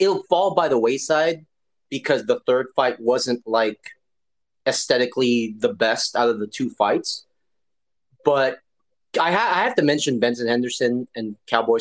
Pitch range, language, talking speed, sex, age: 125-200 Hz, English, 150 wpm, male, 30-49